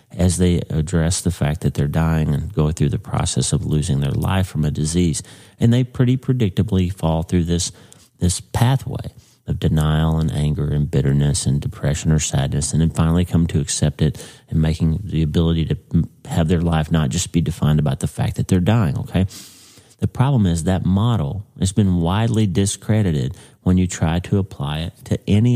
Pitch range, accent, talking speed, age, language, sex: 80-105 Hz, American, 190 wpm, 40-59, English, male